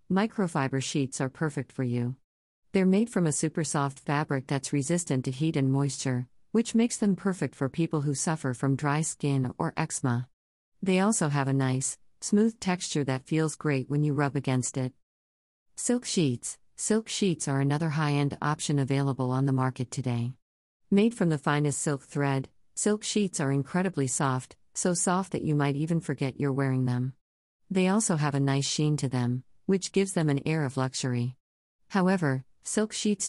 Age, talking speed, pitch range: 50-69, 180 wpm, 130-175 Hz